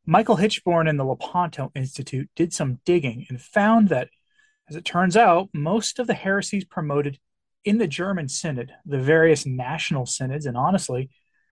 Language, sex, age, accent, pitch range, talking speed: English, male, 30-49, American, 135-180 Hz, 160 wpm